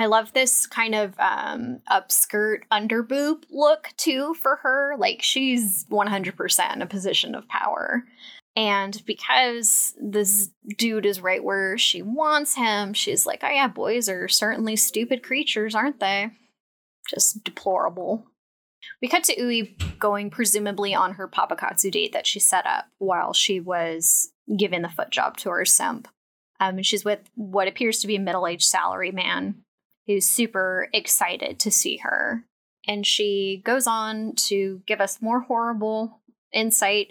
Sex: female